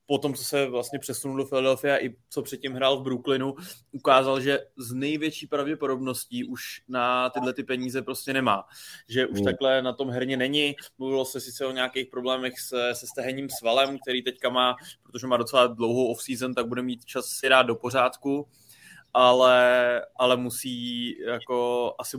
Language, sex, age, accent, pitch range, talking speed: Czech, male, 20-39, native, 125-135 Hz, 175 wpm